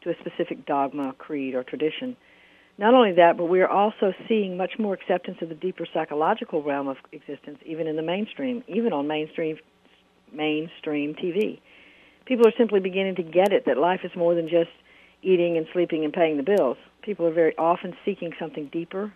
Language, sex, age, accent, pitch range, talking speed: English, female, 60-79, American, 155-185 Hz, 190 wpm